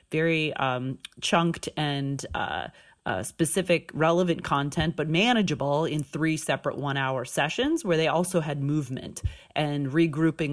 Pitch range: 145-180 Hz